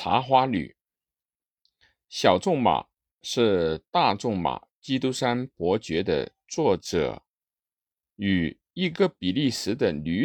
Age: 50-69